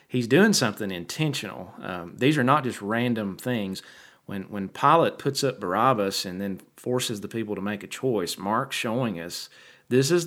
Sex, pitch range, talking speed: male, 100-130 Hz, 180 wpm